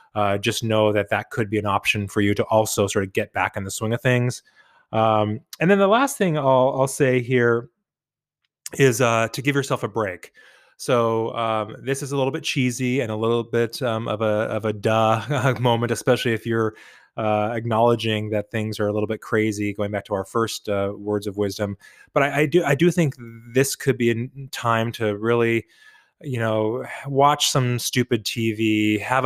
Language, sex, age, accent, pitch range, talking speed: English, male, 20-39, American, 105-125 Hz, 205 wpm